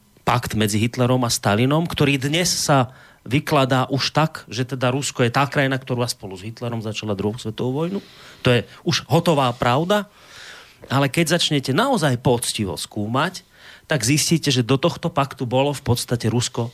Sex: male